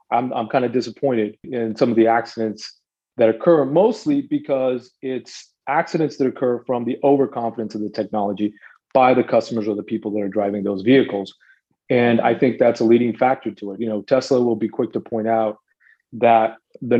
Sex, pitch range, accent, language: male, 115-140 Hz, American, English